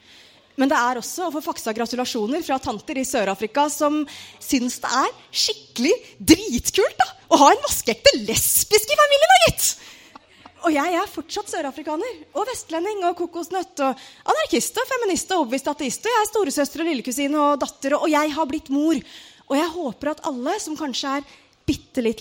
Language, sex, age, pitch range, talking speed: English, female, 30-49, 245-345 Hz, 190 wpm